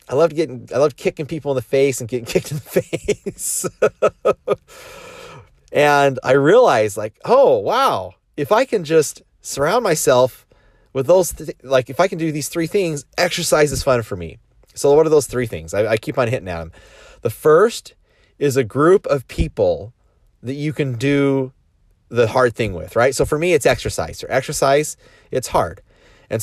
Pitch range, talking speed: 115-175 Hz, 185 wpm